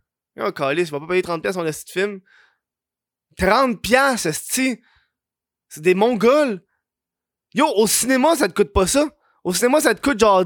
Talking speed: 180 wpm